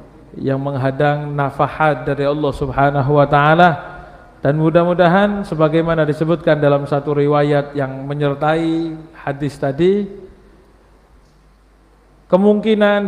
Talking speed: 90 wpm